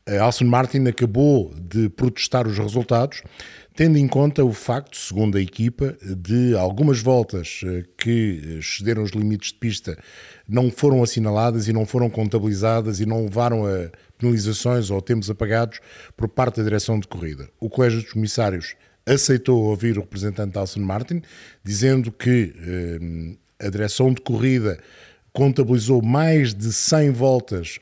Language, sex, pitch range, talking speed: Portuguese, male, 100-125 Hz, 140 wpm